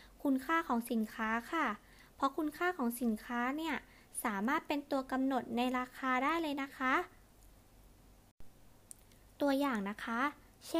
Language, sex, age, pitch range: Thai, female, 20-39, 235-300 Hz